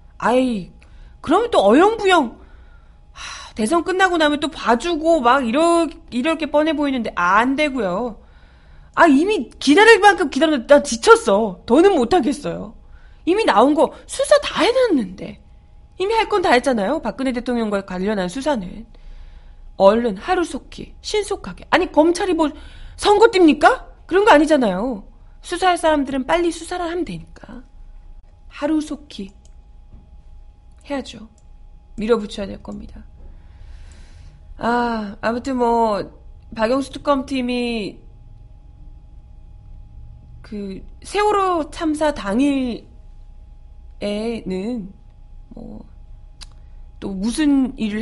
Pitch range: 195-315 Hz